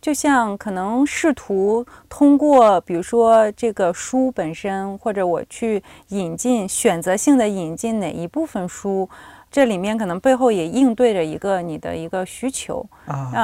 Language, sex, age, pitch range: Chinese, female, 30-49, 190-255 Hz